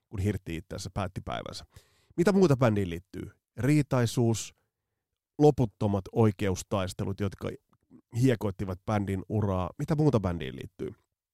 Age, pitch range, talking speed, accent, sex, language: 30-49, 95-135 Hz, 100 wpm, native, male, Finnish